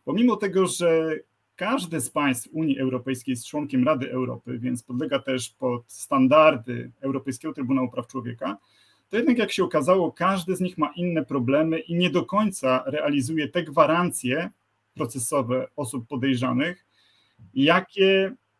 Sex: male